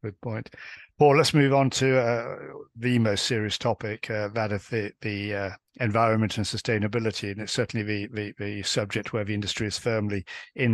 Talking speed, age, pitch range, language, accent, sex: 190 wpm, 50-69, 105-120 Hz, English, British, male